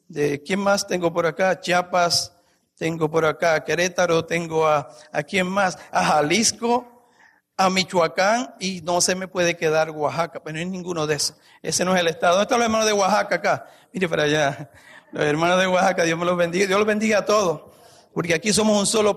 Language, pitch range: English, 165-205 Hz